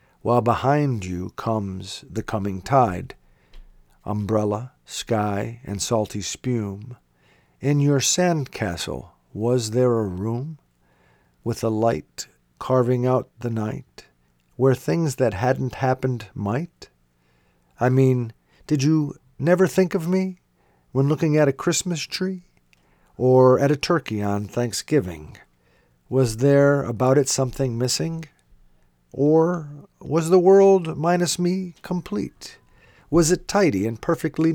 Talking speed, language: 120 wpm, English